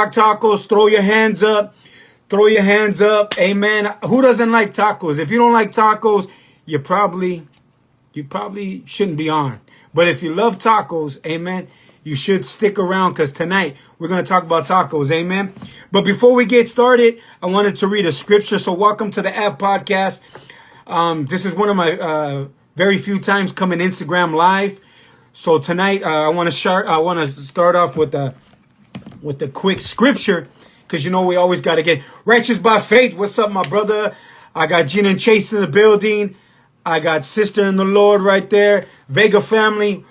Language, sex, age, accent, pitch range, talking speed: English, male, 30-49, American, 165-210 Hz, 185 wpm